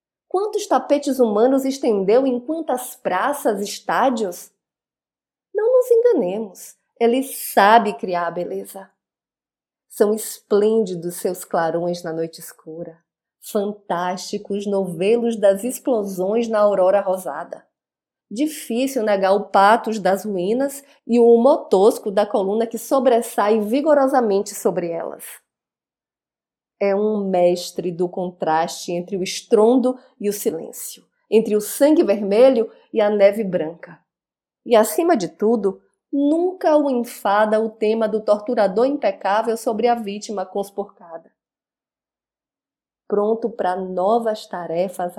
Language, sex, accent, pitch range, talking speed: Portuguese, female, Brazilian, 190-250 Hz, 115 wpm